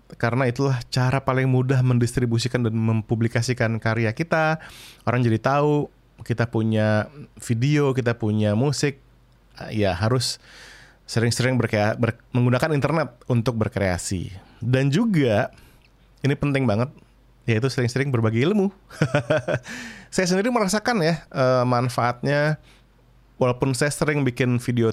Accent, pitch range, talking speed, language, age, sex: native, 110-135 Hz, 115 wpm, Indonesian, 20-39, male